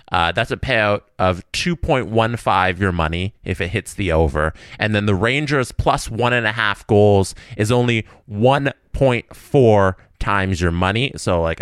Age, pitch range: 20-39, 90-130 Hz